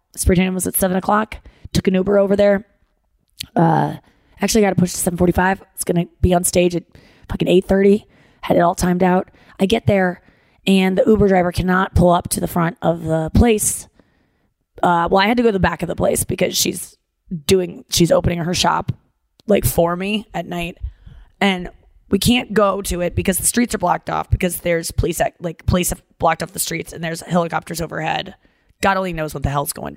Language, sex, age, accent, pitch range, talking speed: English, female, 20-39, American, 170-200 Hz, 210 wpm